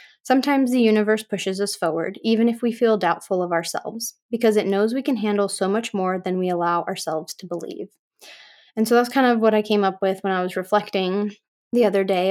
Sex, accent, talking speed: female, American, 220 wpm